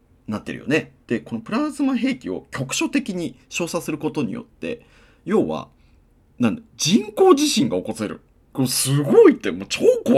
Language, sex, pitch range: Japanese, male, 95-155 Hz